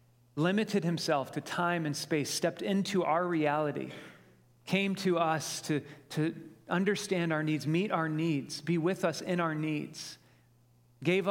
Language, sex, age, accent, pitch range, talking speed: English, male, 40-59, American, 135-170 Hz, 150 wpm